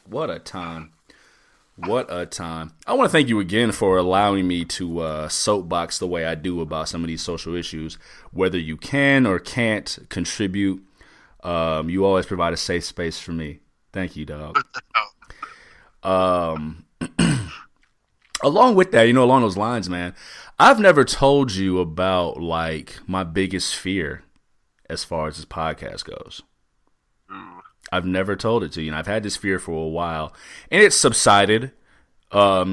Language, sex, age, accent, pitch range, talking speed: English, male, 30-49, American, 80-100 Hz, 165 wpm